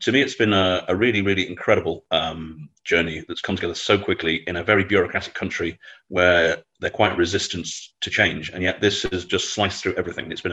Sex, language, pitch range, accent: male, English, 85-95 Hz, British